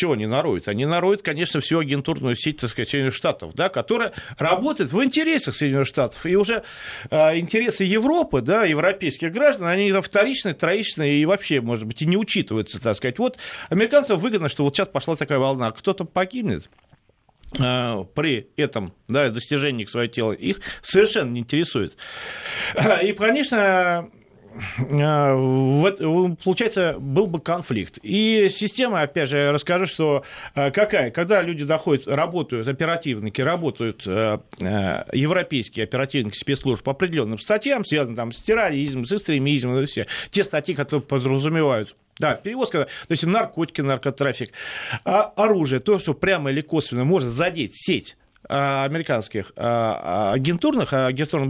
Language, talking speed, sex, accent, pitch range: Russian, 140 wpm, male, native, 130-195 Hz